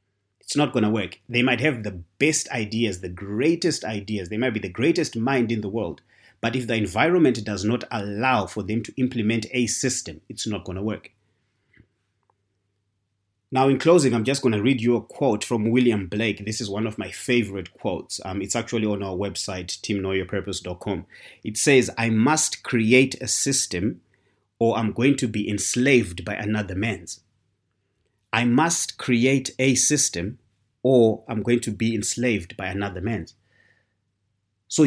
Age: 30-49